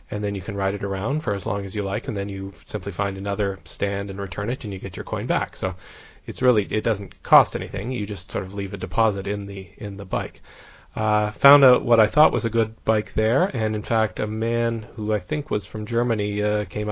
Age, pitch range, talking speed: 40-59, 100-110 Hz, 255 wpm